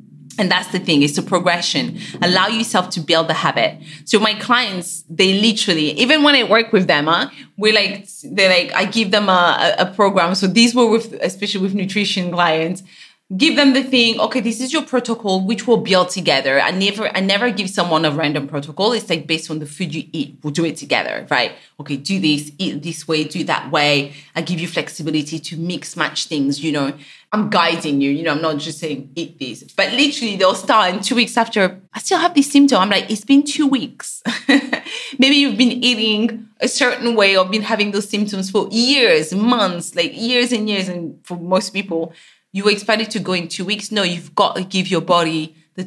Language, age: English, 30-49